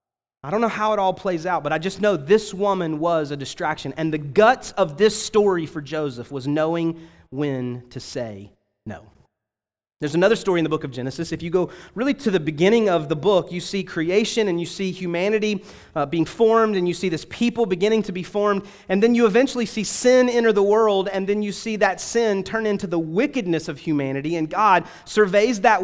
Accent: American